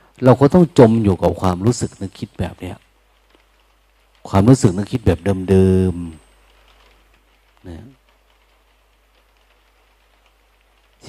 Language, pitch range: Thai, 95-120 Hz